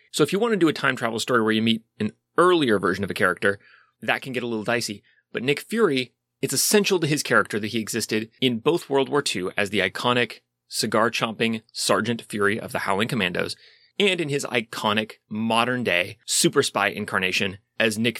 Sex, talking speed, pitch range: male, 200 wpm, 105-140 Hz